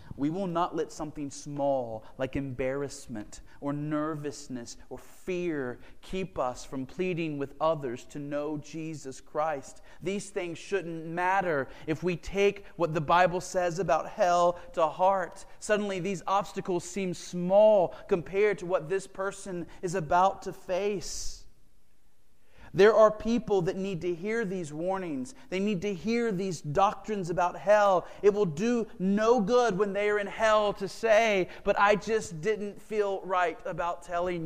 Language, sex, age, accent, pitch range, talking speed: English, male, 30-49, American, 145-200 Hz, 155 wpm